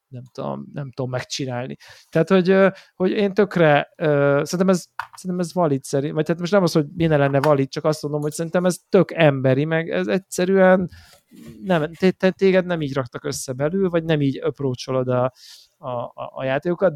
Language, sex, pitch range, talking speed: Hungarian, male, 140-180 Hz, 180 wpm